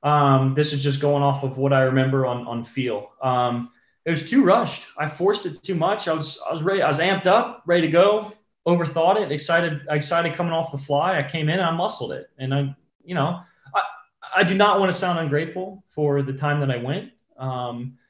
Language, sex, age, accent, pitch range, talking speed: English, male, 20-39, American, 135-165 Hz, 230 wpm